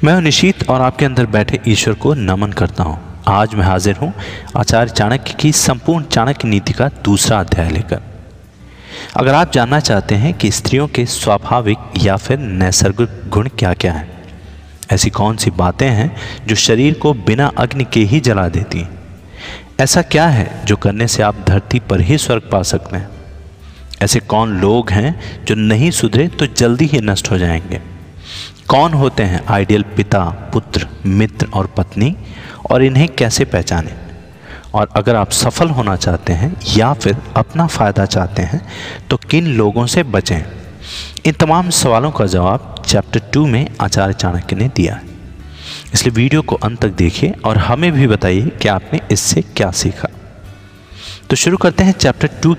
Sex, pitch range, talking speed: male, 95-130 Hz, 170 wpm